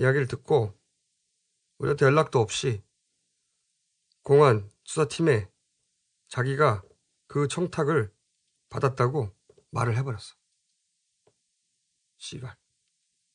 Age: 40-59